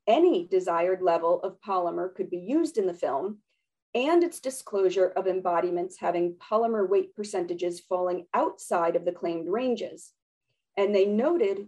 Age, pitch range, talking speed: 40-59, 185-260 Hz, 150 wpm